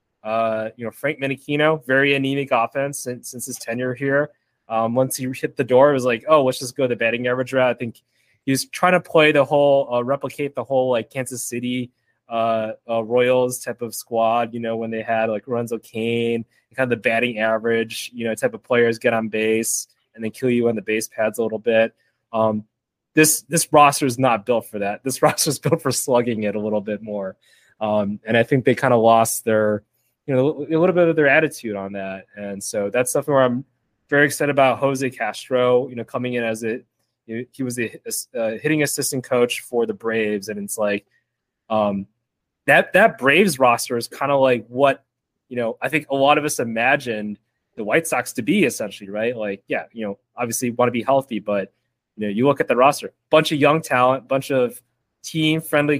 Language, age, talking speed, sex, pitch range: English, 20-39, 220 wpm, male, 115-135 Hz